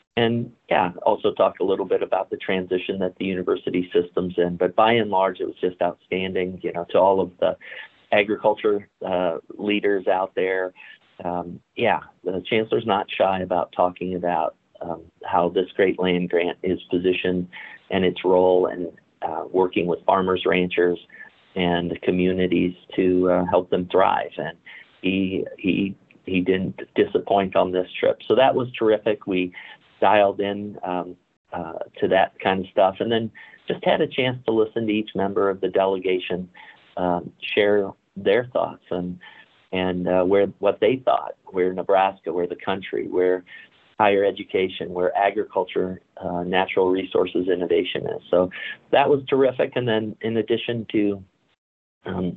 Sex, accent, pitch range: male, American, 90-100 Hz